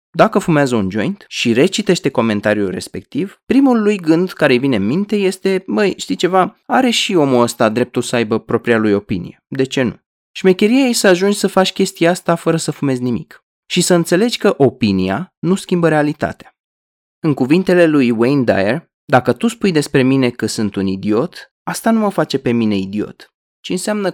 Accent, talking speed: native, 185 wpm